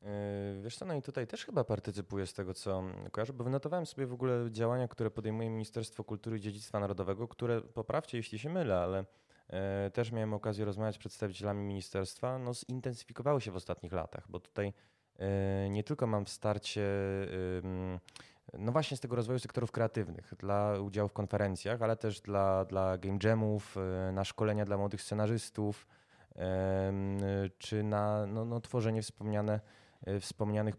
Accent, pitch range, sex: native, 95-115 Hz, male